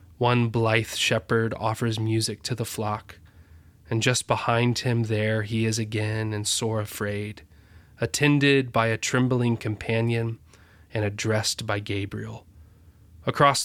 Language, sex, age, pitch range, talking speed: English, male, 20-39, 105-120 Hz, 125 wpm